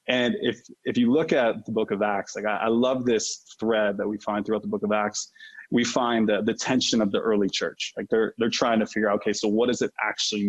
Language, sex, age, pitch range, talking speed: English, male, 20-39, 105-120 Hz, 255 wpm